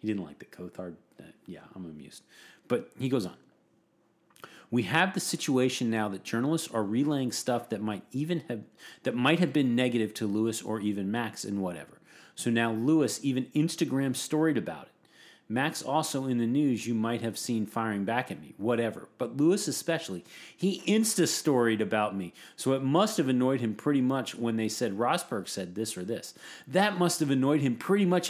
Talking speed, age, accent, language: 190 wpm, 40-59, American, English